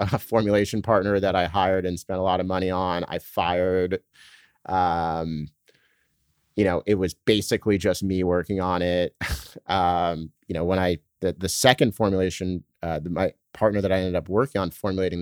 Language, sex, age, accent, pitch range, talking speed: English, male, 30-49, American, 85-100 Hz, 180 wpm